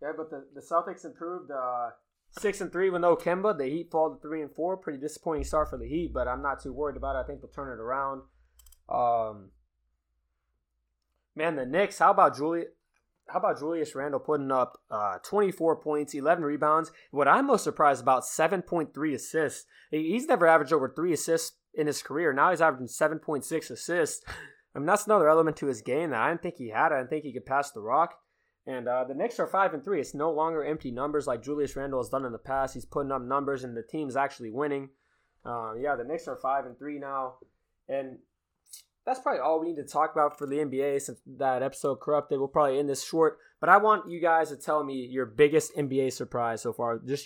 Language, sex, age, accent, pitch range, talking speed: English, male, 20-39, American, 125-160 Hz, 230 wpm